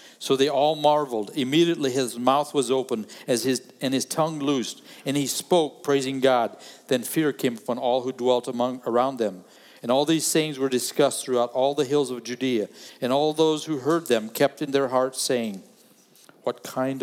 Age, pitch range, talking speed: 50-69, 120-150 Hz, 195 wpm